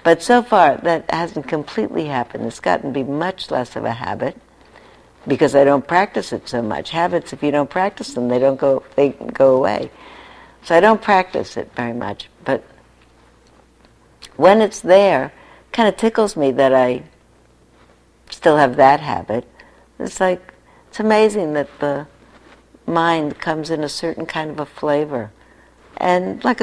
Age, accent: 60-79, American